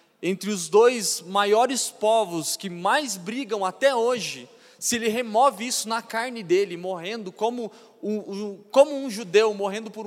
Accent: Brazilian